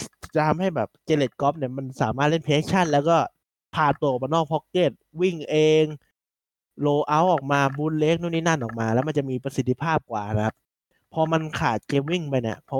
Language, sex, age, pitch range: Thai, male, 20-39, 120-160 Hz